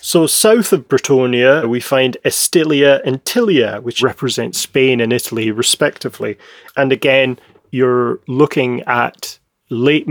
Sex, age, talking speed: male, 30-49, 125 wpm